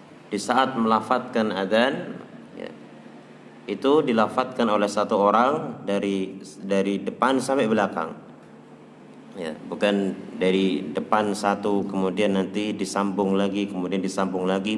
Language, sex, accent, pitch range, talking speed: Indonesian, male, native, 95-145 Hz, 110 wpm